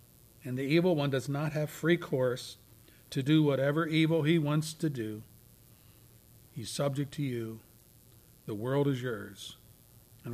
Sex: male